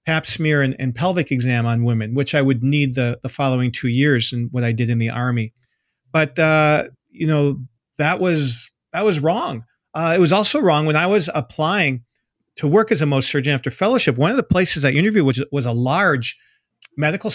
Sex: male